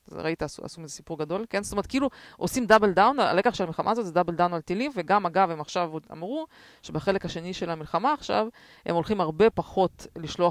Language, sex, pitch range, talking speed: Hebrew, female, 165-205 Hz, 205 wpm